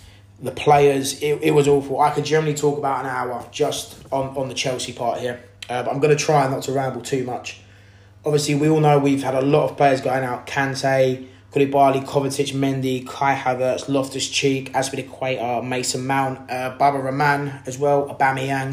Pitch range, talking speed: 120-145 Hz, 190 wpm